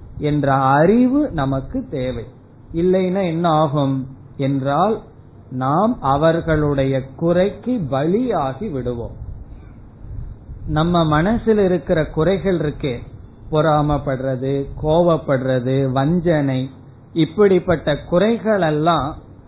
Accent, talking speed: native, 75 wpm